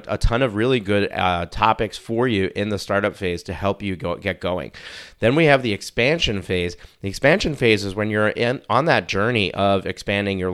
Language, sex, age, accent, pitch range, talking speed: English, male, 30-49, American, 90-110 Hz, 215 wpm